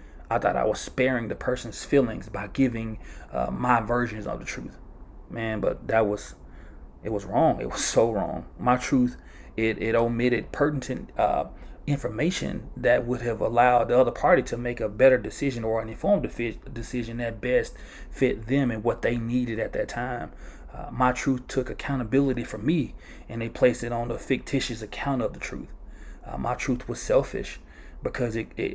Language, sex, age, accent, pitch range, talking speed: English, male, 30-49, American, 105-130 Hz, 180 wpm